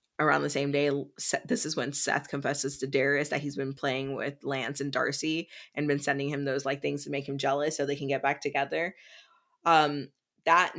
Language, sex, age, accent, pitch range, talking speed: English, female, 20-39, American, 140-160 Hz, 215 wpm